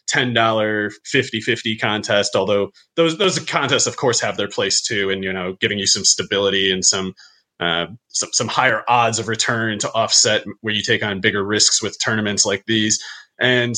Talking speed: 185 wpm